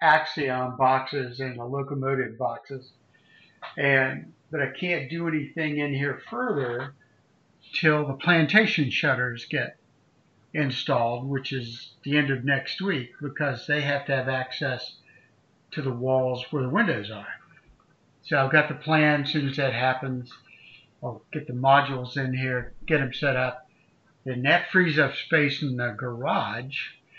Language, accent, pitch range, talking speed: English, American, 125-150 Hz, 150 wpm